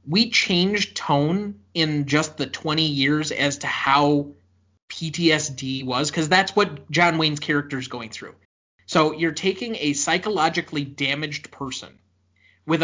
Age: 30-49